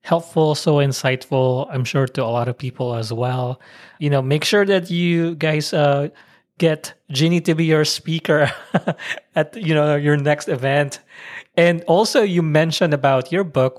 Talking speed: 170 wpm